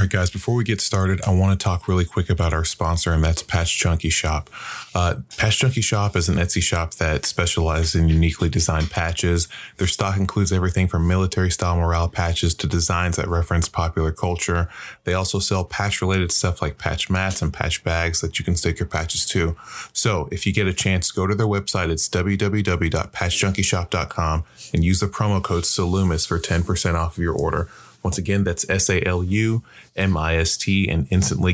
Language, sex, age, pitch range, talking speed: English, male, 20-39, 85-95 Hz, 185 wpm